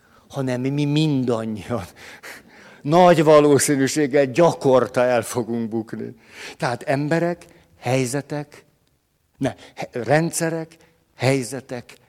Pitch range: 135-160 Hz